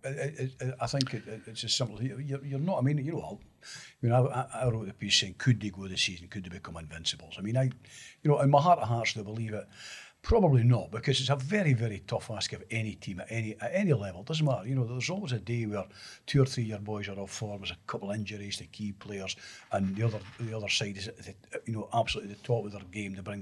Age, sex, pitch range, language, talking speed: 60-79, male, 105-135 Hz, English, 280 wpm